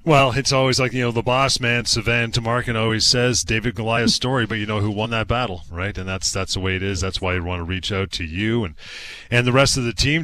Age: 40-59